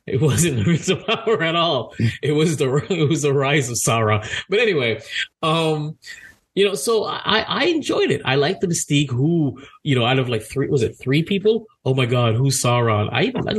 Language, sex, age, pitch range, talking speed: English, male, 30-49, 115-165 Hz, 210 wpm